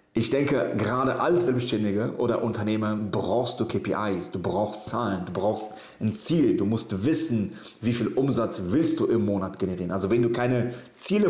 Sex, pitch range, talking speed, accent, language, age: male, 100-120 Hz, 175 wpm, German, German, 40-59